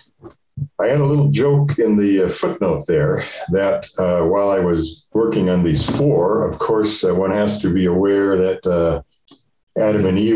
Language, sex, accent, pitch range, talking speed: English, male, American, 95-140 Hz, 180 wpm